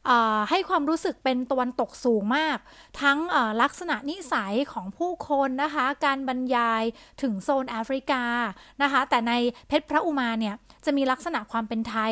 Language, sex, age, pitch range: Thai, female, 20-39, 230-300 Hz